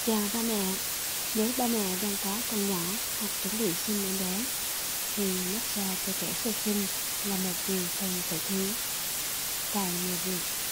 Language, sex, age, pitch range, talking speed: Vietnamese, female, 20-39, 185-215 Hz, 175 wpm